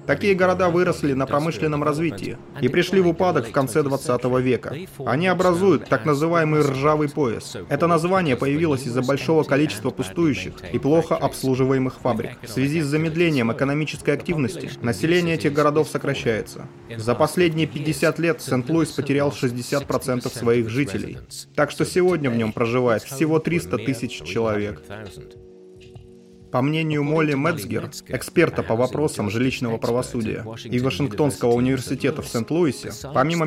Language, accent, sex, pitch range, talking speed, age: Russian, native, male, 125-155 Hz, 135 wpm, 30-49